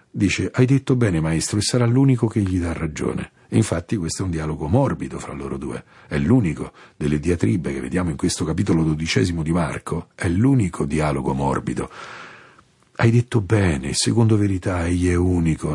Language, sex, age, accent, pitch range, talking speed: Italian, male, 50-69, native, 80-125 Hz, 170 wpm